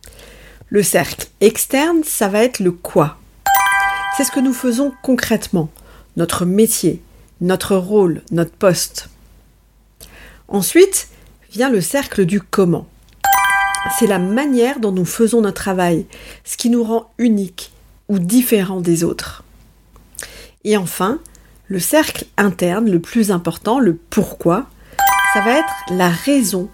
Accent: French